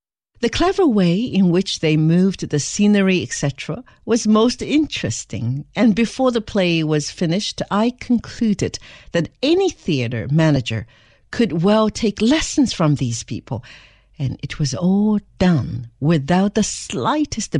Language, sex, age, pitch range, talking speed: English, female, 60-79, 140-220 Hz, 135 wpm